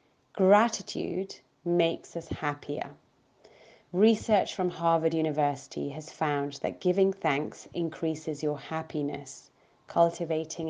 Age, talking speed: 30-49, 95 wpm